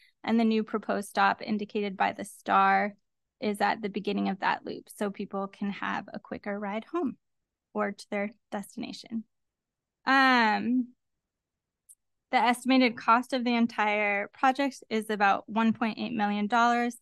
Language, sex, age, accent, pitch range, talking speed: English, female, 10-29, American, 205-240 Hz, 140 wpm